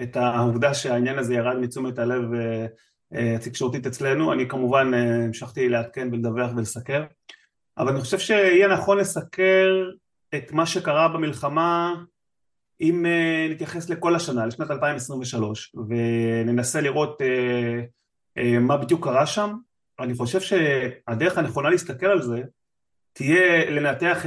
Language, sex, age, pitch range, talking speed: Hebrew, male, 30-49, 130-170 Hz, 130 wpm